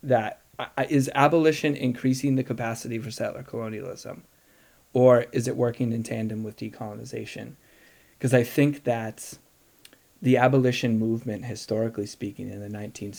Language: English